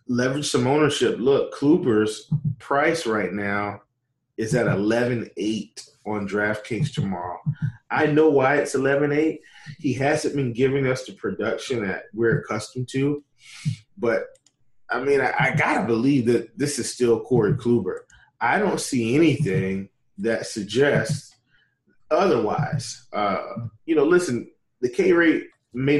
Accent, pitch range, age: American, 110-145 Hz, 20-39